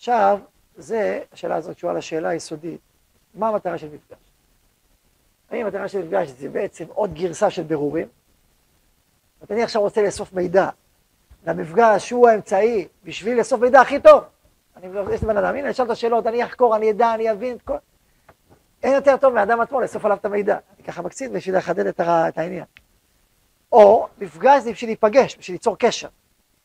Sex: male